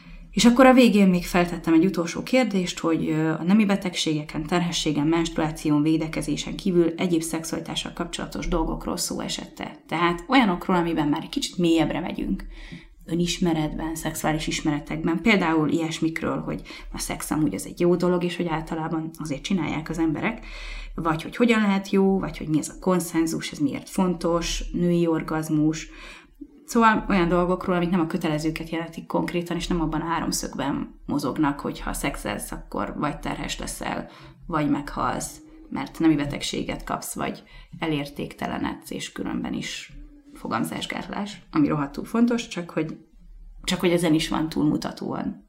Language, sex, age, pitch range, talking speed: Hungarian, female, 20-39, 160-195 Hz, 150 wpm